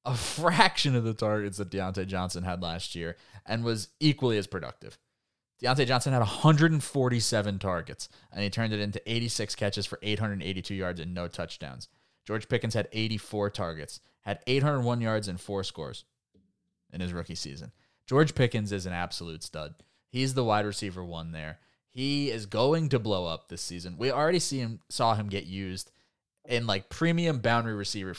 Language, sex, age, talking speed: English, male, 20-39, 175 wpm